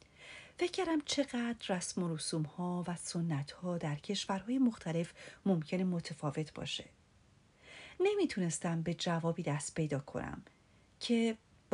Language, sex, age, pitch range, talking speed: Persian, female, 40-59, 170-240 Hz, 110 wpm